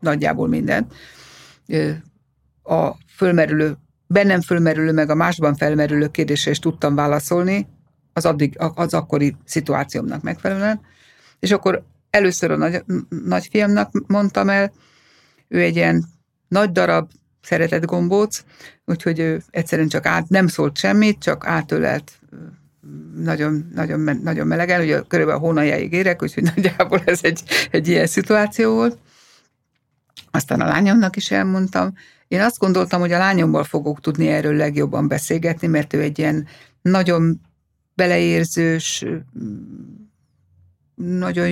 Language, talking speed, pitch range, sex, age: Hungarian, 125 wpm, 145-180 Hz, female, 60-79